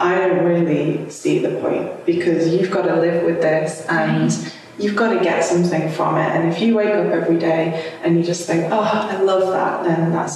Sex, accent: female, British